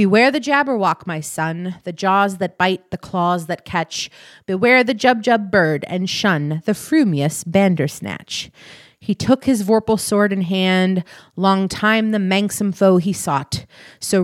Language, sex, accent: English, female, American